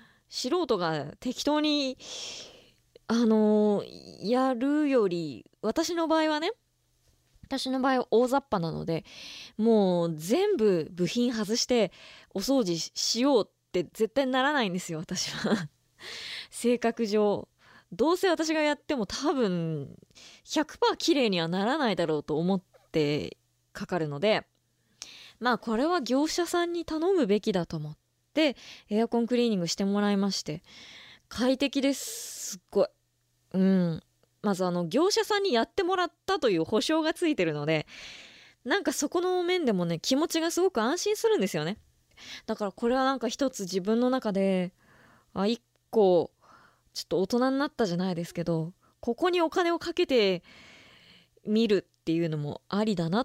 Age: 20-39